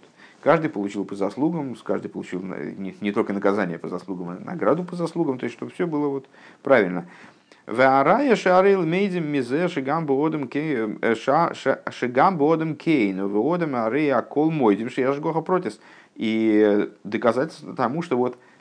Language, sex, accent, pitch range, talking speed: Russian, male, native, 95-135 Hz, 95 wpm